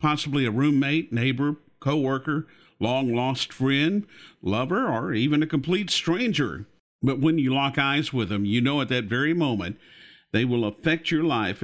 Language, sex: English, male